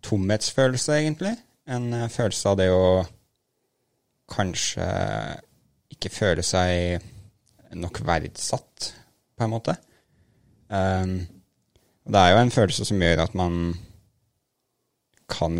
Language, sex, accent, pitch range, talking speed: English, male, Norwegian, 85-105 Hz, 110 wpm